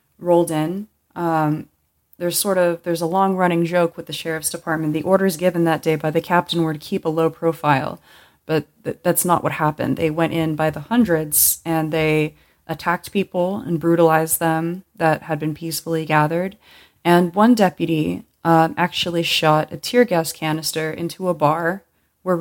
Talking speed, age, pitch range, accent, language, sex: 175 wpm, 20-39, 155-175 Hz, American, English, female